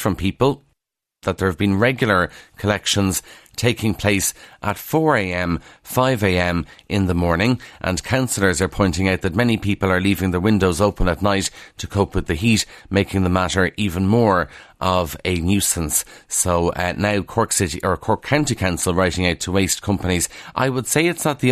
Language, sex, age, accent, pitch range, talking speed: English, male, 30-49, Irish, 90-110 Hz, 180 wpm